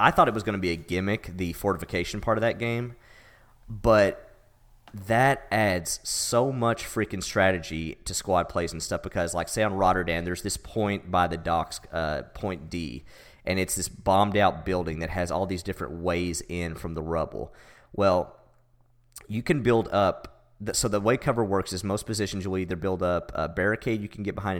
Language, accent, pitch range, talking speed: English, American, 90-110 Hz, 195 wpm